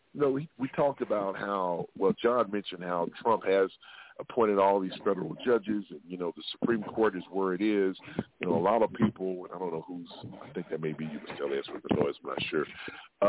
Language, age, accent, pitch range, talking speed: English, 40-59, American, 90-130 Hz, 255 wpm